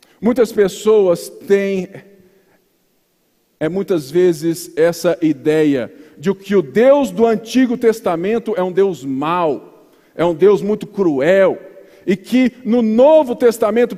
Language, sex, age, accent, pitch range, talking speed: Portuguese, male, 50-69, Brazilian, 205-260 Hz, 120 wpm